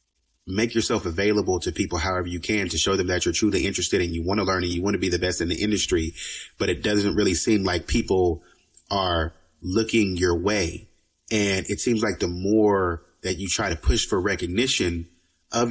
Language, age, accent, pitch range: English, 30-49, American, 85-115 Hz